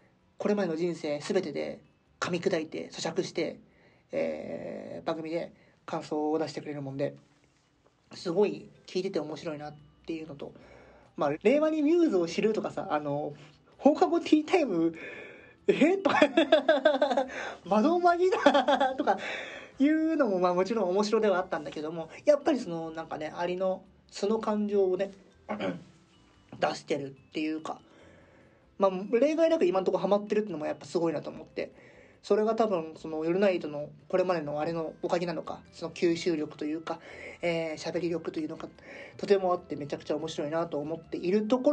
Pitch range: 160-270 Hz